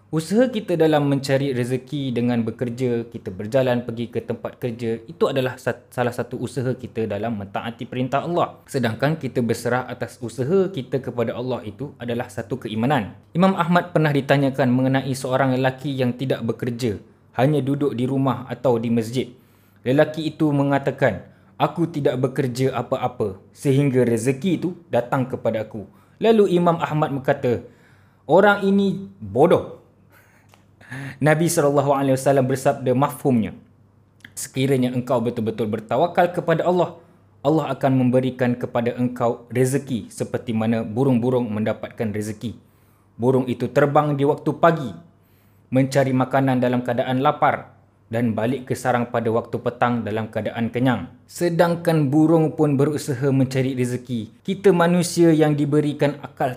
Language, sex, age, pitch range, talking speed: Malay, male, 20-39, 115-140 Hz, 135 wpm